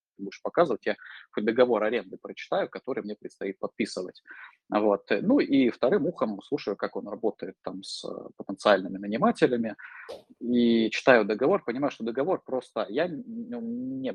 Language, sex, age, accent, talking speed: Russian, male, 20-39, native, 140 wpm